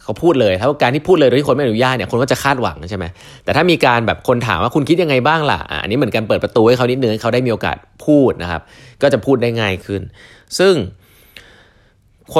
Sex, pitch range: male, 90-120 Hz